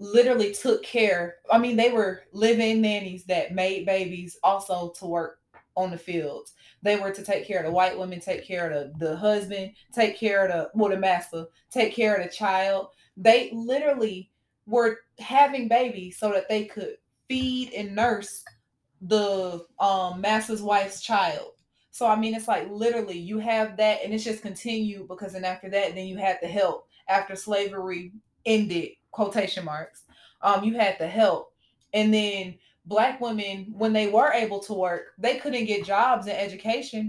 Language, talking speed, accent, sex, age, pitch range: English, 180 wpm, American, female, 20-39, 190-225 Hz